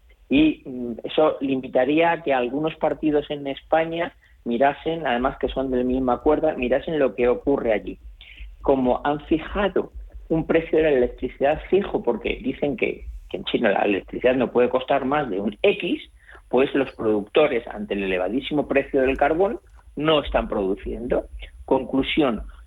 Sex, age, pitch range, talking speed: male, 40-59, 115-155 Hz, 155 wpm